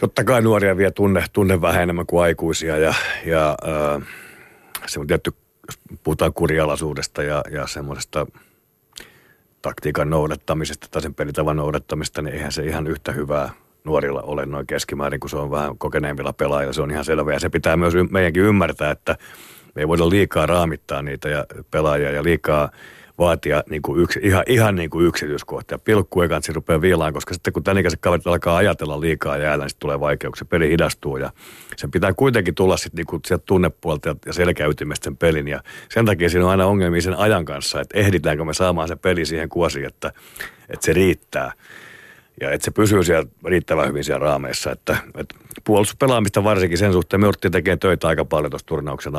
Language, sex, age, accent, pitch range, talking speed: Finnish, male, 50-69, native, 75-95 Hz, 180 wpm